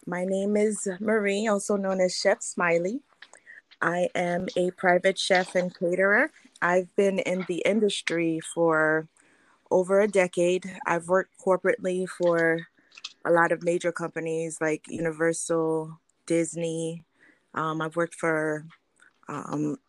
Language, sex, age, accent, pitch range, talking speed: English, female, 20-39, American, 160-185 Hz, 125 wpm